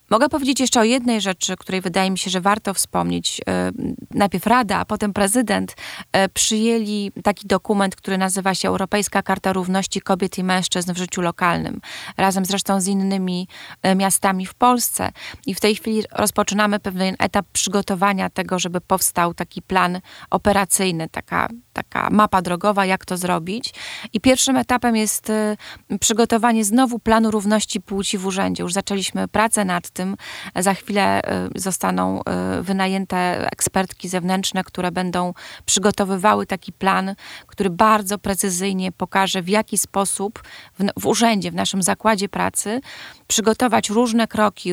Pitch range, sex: 185-215 Hz, female